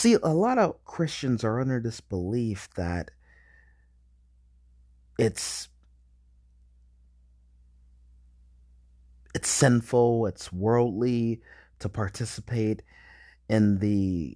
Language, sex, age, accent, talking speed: English, male, 30-49, American, 80 wpm